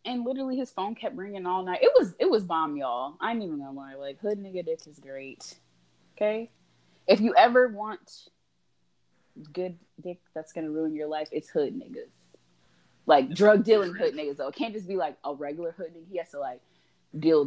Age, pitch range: 20-39, 155-255 Hz